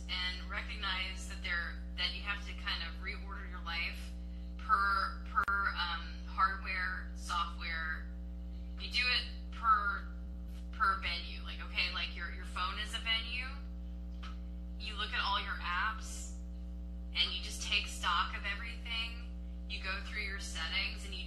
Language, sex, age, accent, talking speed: English, female, 10-29, American, 150 wpm